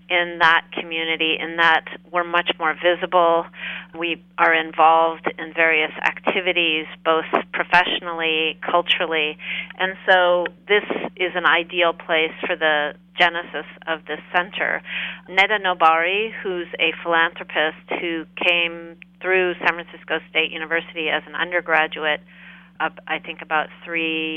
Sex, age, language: female, 40-59, English